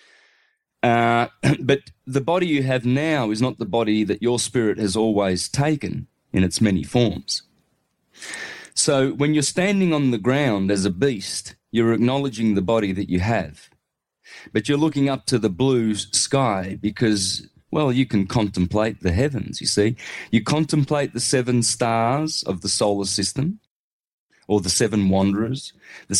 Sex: male